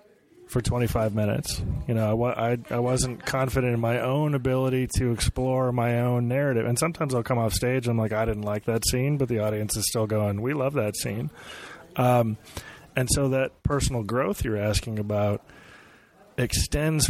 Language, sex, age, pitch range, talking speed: English, male, 30-49, 110-130 Hz, 185 wpm